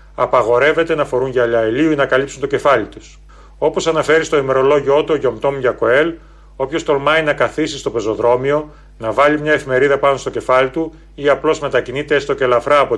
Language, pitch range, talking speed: Greek, 135-165 Hz, 180 wpm